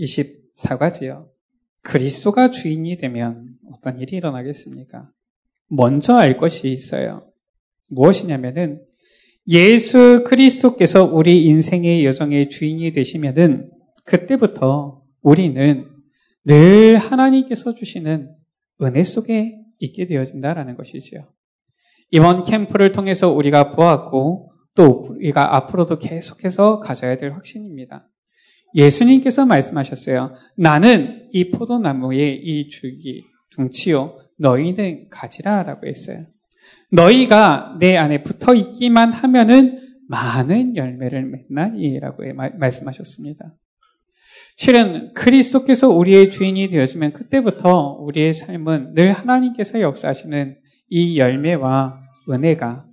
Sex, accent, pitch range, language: male, native, 140-215 Hz, Korean